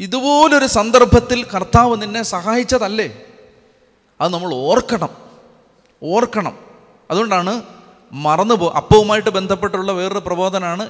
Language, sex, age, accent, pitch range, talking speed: Malayalam, male, 30-49, native, 150-215 Hz, 90 wpm